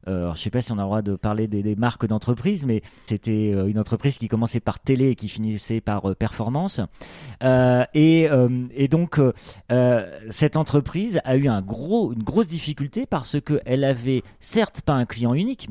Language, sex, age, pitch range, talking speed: French, male, 30-49, 115-155 Hz, 205 wpm